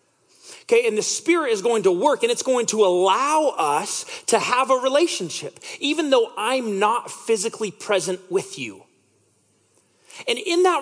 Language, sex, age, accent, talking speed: English, male, 30-49, American, 160 wpm